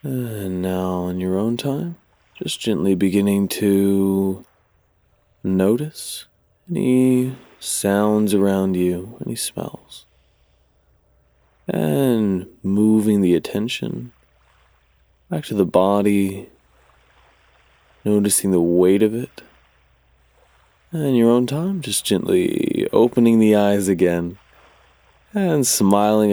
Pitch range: 90-110 Hz